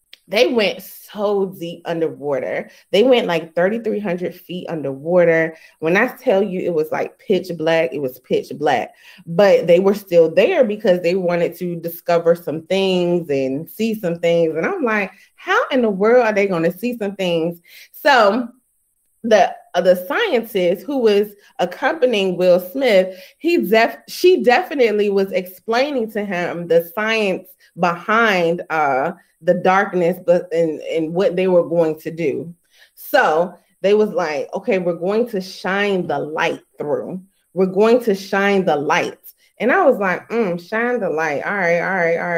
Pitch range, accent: 170-220 Hz, American